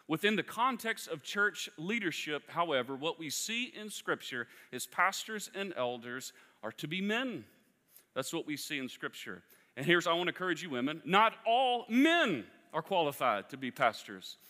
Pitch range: 135-195 Hz